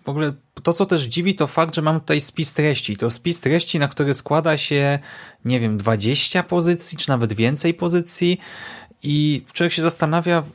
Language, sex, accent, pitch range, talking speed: Polish, male, native, 115-155 Hz, 180 wpm